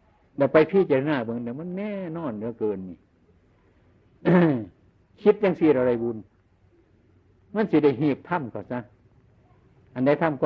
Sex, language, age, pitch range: male, Chinese, 60-79, 100-145 Hz